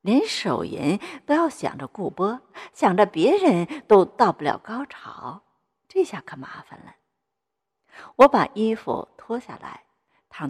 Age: 60-79